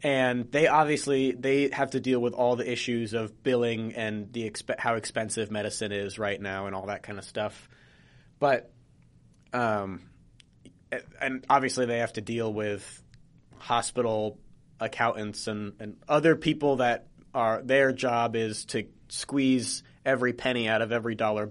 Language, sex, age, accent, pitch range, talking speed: English, male, 20-39, American, 110-130 Hz, 165 wpm